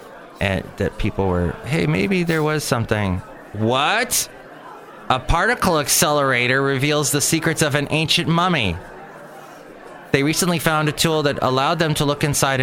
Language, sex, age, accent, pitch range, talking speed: English, male, 30-49, American, 110-150 Hz, 145 wpm